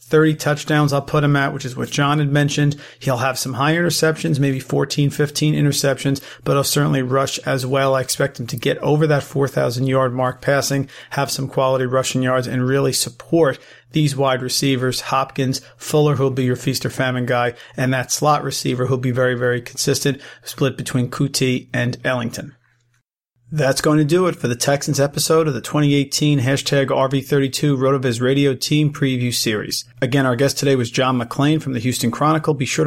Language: English